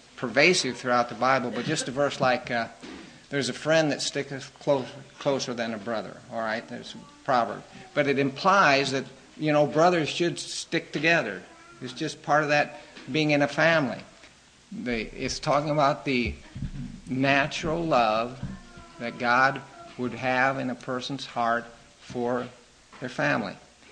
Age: 50-69